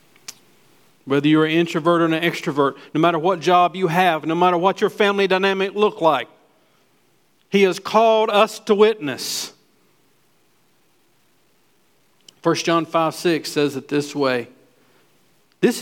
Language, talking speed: English, 135 wpm